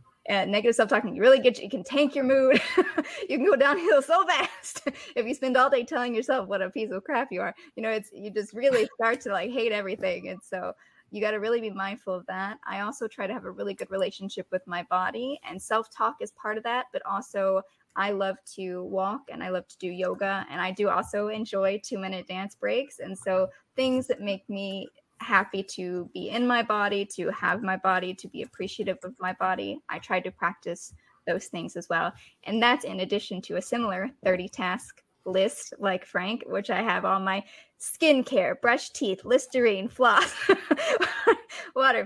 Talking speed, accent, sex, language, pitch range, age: 205 wpm, American, female, English, 190-265 Hz, 20-39